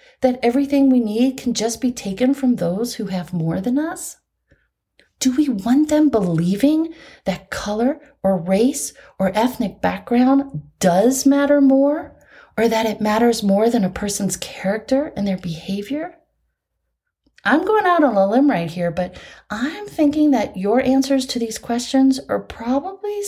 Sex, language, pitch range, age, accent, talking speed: female, English, 190-275 Hz, 30-49, American, 155 wpm